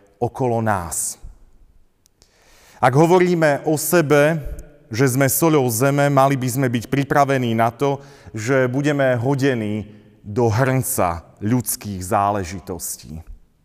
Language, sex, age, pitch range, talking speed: Slovak, male, 30-49, 100-130 Hz, 105 wpm